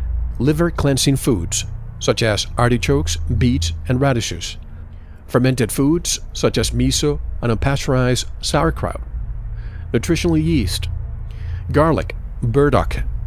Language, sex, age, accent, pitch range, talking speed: English, male, 50-69, American, 85-130 Hz, 90 wpm